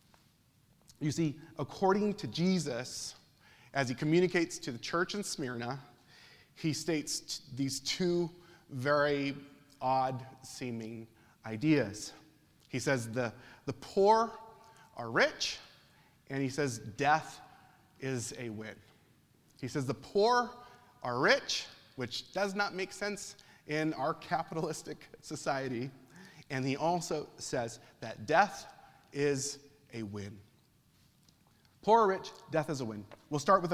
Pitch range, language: 135-200 Hz, English